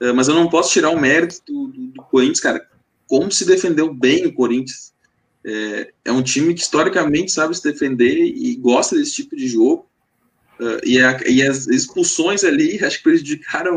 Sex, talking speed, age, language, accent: male, 190 wpm, 20-39, Portuguese, Brazilian